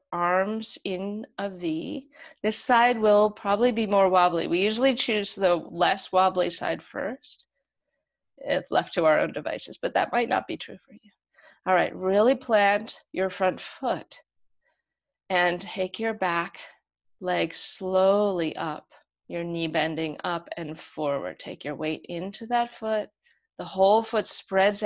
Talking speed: 150 wpm